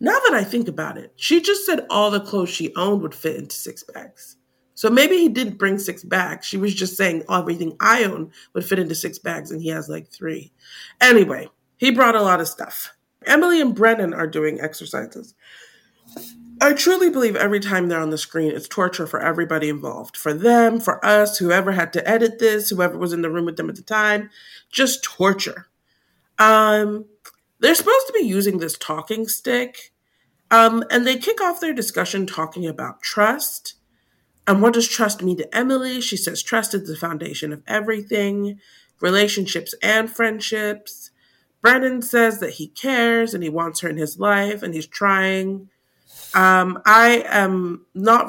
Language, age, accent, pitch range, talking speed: English, 40-59, American, 170-230 Hz, 185 wpm